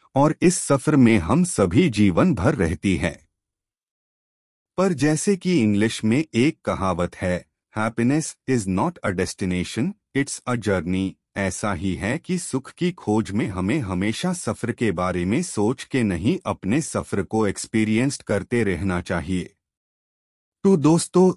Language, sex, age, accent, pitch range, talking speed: Hindi, male, 30-49, native, 95-140 Hz, 145 wpm